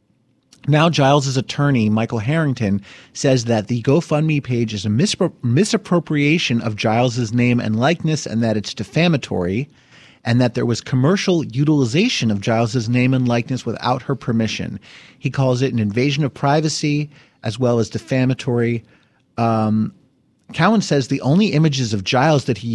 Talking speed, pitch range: 155 wpm, 120-160 Hz